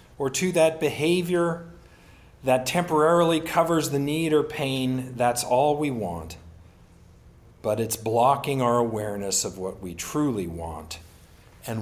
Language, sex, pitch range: English, male, 105-140 Hz